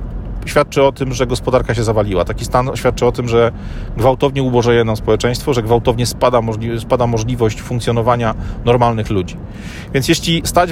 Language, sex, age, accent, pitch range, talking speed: Polish, male, 40-59, native, 110-130 Hz, 150 wpm